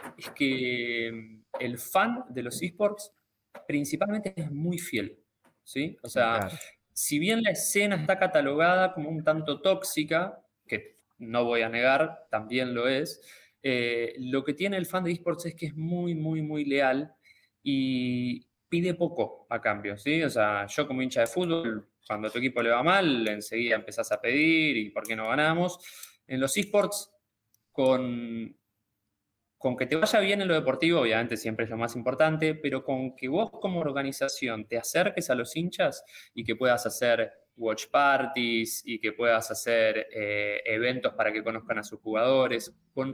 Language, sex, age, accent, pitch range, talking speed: Spanish, male, 20-39, Argentinian, 115-165 Hz, 175 wpm